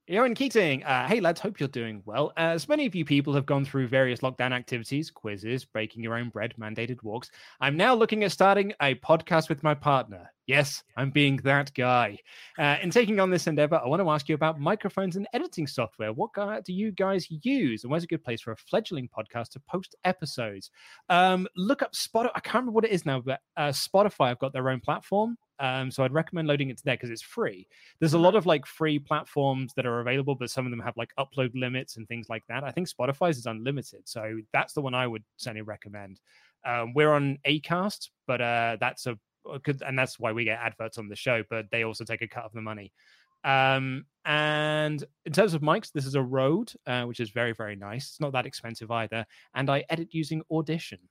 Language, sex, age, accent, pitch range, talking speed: English, male, 20-39, British, 120-165 Hz, 230 wpm